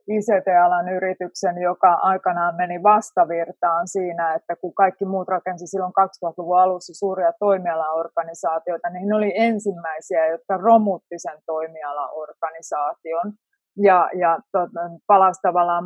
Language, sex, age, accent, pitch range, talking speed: Finnish, female, 30-49, native, 175-210 Hz, 115 wpm